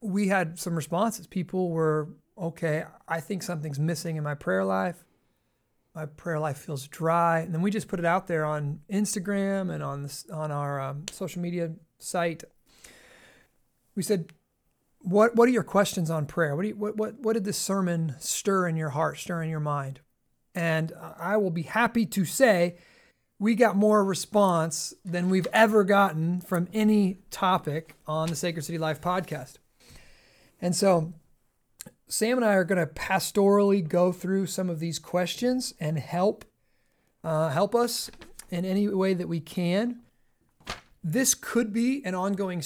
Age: 30-49